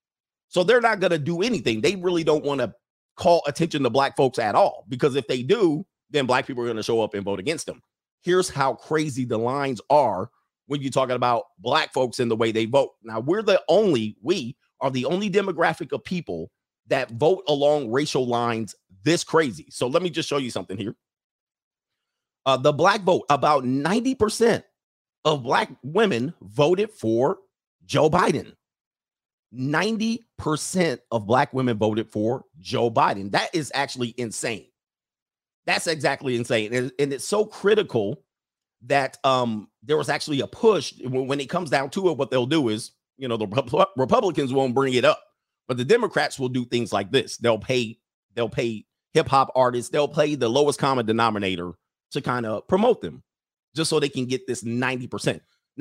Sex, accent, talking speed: male, American, 180 wpm